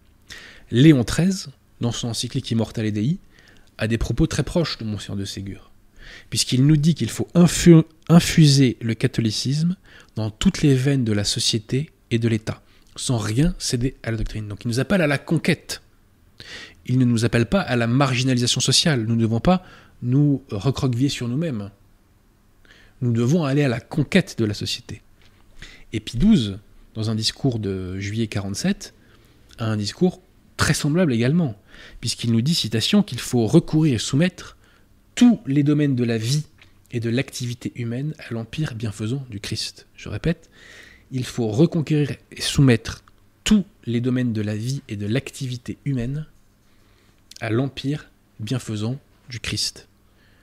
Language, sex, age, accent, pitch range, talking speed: French, male, 20-39, French, 105-140 Hz, 160 wpm